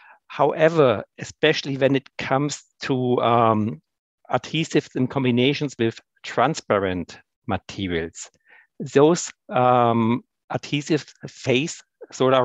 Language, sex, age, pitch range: English, male, 60-79, 115-140 Hz